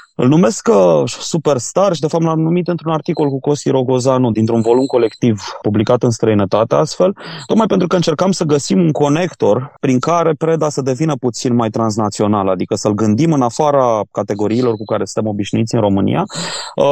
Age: 20-39